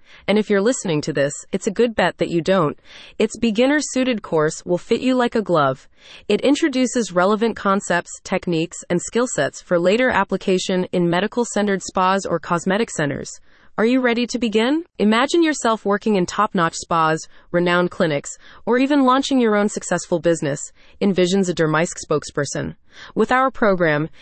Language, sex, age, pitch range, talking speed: English, female, 30-49, 170-235 Hz, 165 wpm